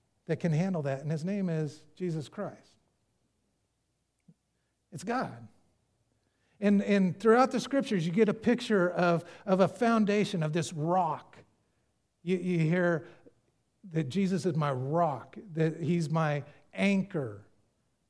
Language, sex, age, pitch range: English, male, 50-69, 130-190 Hz